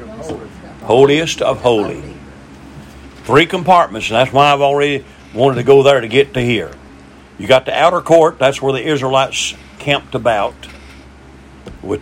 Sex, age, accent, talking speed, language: male, 50-69, American, 150 wpm, English